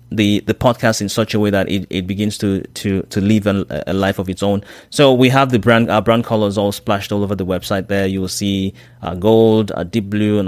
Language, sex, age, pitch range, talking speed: English, male, 30-49, 100-120 Hz, 265 wpm